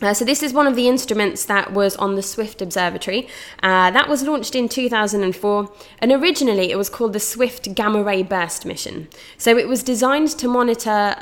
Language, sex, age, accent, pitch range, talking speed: English, female, 20-39, British, 185-230 Hz, 200 wpm